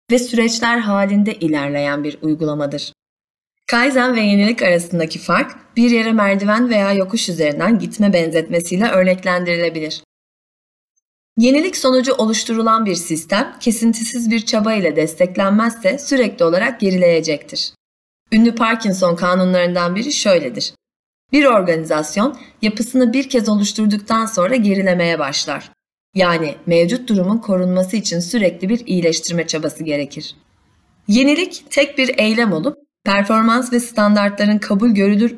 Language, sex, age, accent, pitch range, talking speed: Turkish, female, 30-49, native, 170-235 Hz, 115 wpm